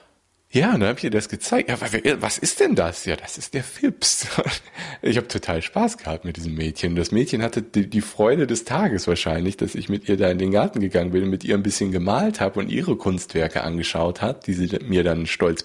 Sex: male